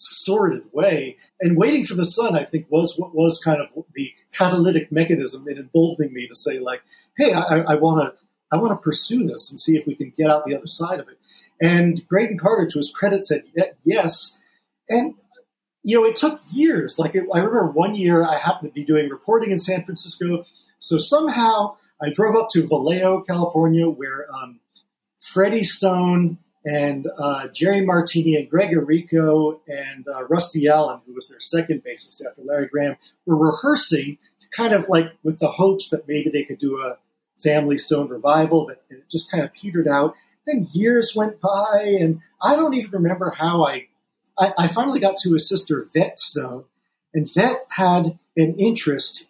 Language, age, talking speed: English, 40-59, 185 wpm